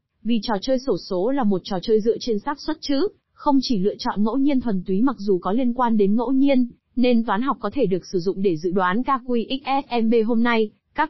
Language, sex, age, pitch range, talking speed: Vietnamese, female, 20-39, 200-255 Hz, 245 wpm